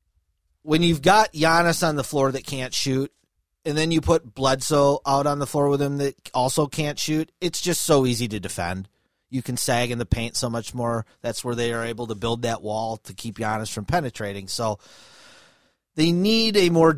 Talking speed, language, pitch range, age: 210 wpm, English, 120-165 Hz, 30-49